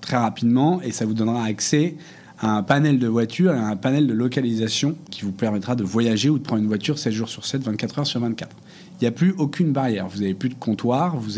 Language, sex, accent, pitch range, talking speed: French, male, French, 110-150 Hz, 255 wpm